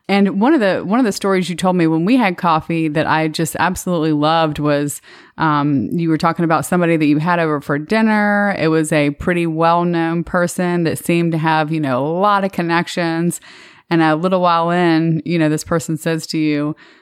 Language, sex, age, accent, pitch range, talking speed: English, female, 20-39, American, 160-185 Hz, 220 wpm